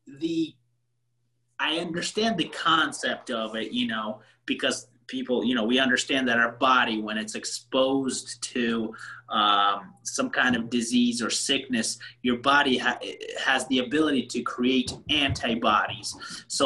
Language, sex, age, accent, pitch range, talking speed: English, male, 30-49, American, 125-160 Hz, 135 wpm